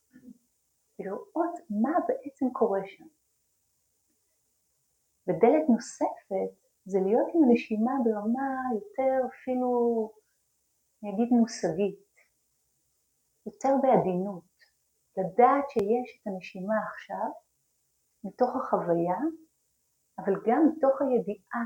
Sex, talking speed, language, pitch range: female, 80 wpm, Hebrew, 185-250 Hz